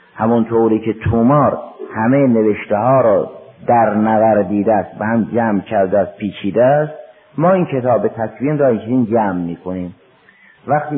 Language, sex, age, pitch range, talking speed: Persian, male, 50-69, 105-140 Hz, 150 wpm